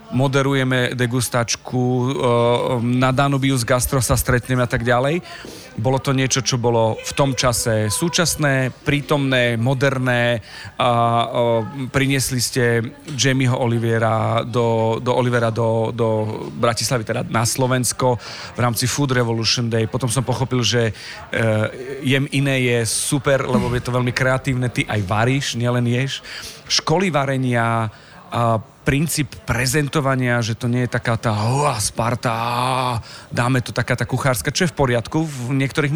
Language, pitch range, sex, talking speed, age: Slovak, 120-140 Hz, male, 130 wpm, 40-59